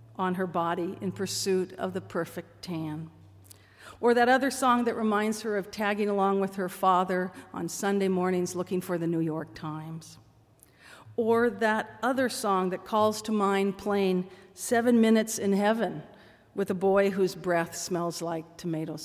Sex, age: female, 50-69